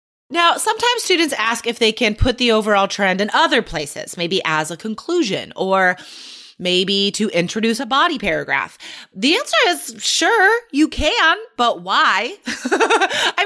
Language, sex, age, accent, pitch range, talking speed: English, female, 20-39, American, 215-335 Hz, 150 wpm